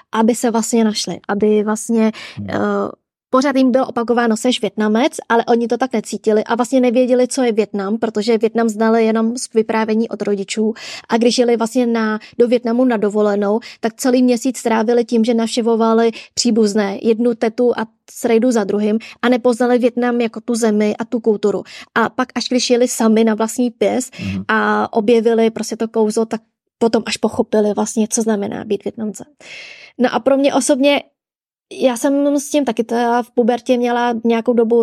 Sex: female